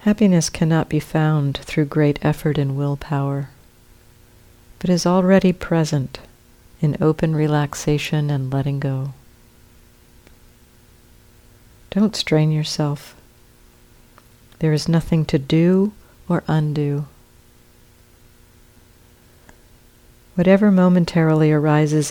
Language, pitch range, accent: English, 135-165 Hz, American